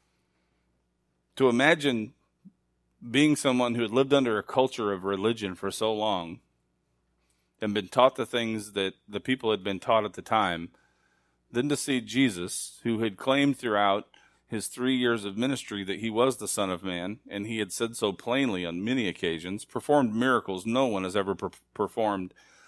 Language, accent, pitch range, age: English, American, 90-125 Hz, 40-59